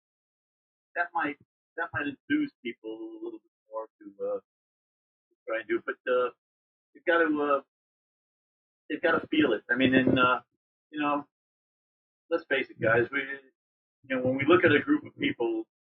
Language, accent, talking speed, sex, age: English, American, 175 wpm, male, 50-69